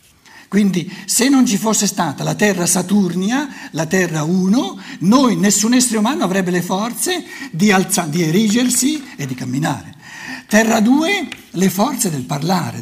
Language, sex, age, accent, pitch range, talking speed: Italian, male, 60-79, native, 170-235 Hz, 150 wpm